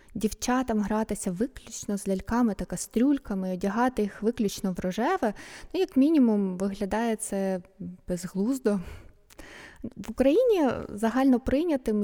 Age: 20-39